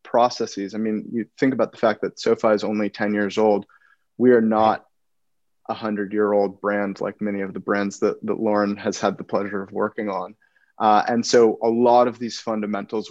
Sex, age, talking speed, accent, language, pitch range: male, 20-39, 200 wpm, American, English, 100-115 Hz